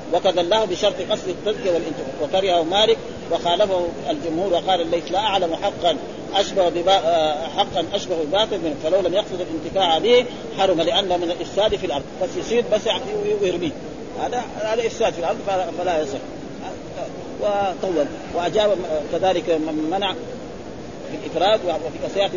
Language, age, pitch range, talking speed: Arabic, 40-59, 170-200 Hz, 125 wpm